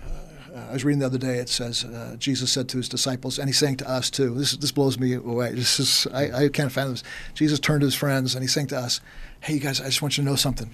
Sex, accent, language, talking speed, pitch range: male, American, English, 295 wpm, 130-155 Hz